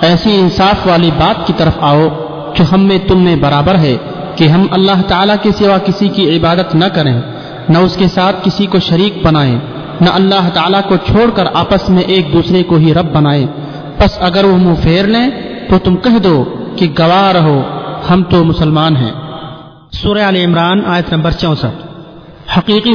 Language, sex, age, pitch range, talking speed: Urdu, male, 40-59, 160-195 Hz, 180 wpm